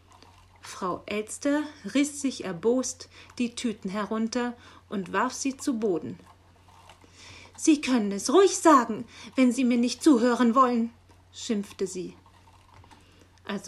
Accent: German